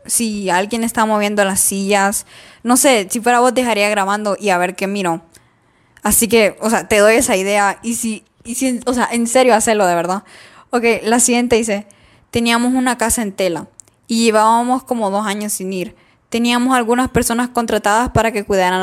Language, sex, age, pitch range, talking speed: Spanish, female, 10-29, 200-240 Hz, 190 wpm